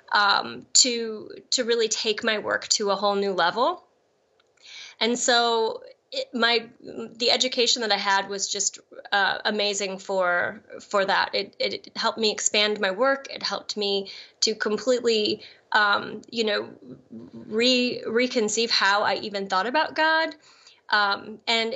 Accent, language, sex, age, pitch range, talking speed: American, English, female, 20-39, 200-265 Hz, 145 wpm